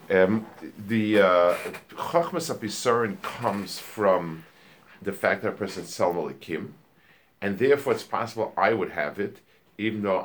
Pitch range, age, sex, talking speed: 85-115 Hz, 50-69, male, 135 wpm